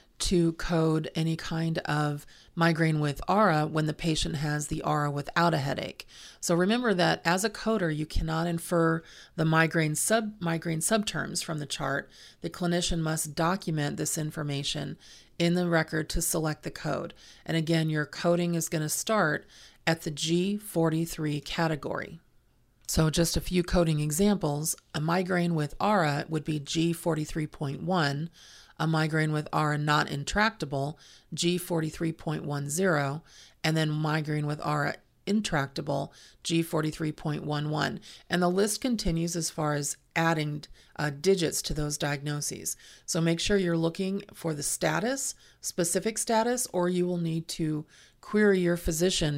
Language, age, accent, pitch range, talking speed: English, 40-59, American, 150-175 Hz, 140 wpm